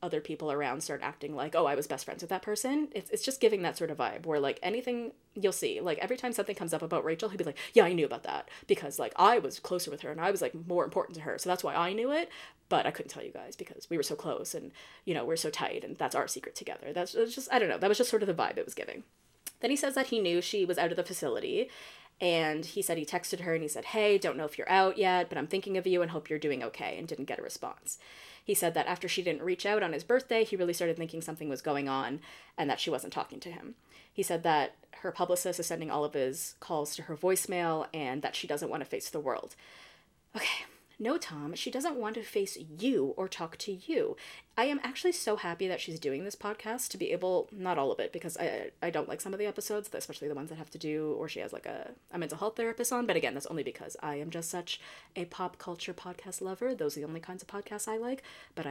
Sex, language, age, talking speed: female, English, 20-39, 280 wpm